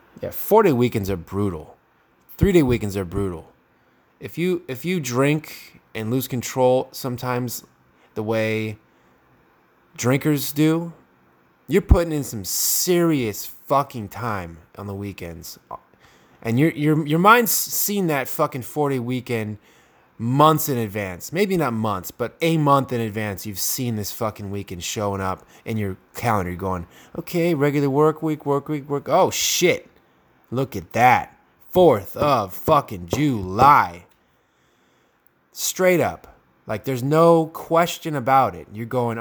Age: 20-39